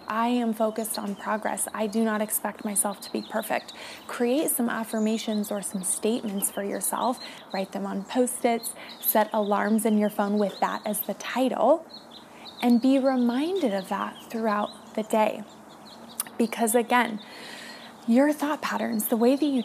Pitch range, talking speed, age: 210-240 Hz, 160 wpm, 20-39